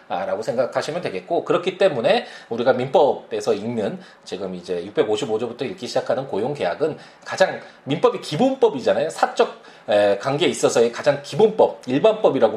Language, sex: Korean, male